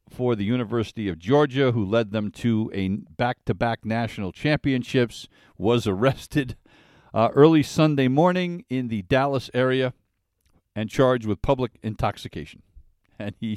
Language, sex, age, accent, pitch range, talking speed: English, male, 50-69, American, 95-125 Hz, 135 wpm